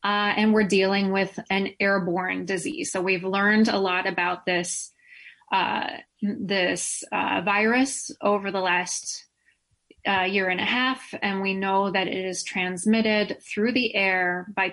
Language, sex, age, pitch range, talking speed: English, female, 20-39, 195-225 Hz, 155 wpm